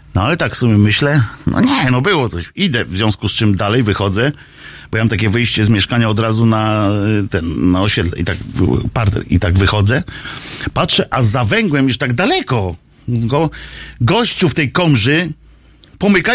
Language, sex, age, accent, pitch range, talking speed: Polish, male, 50-69, native, 115-185 Hz, 185 wpm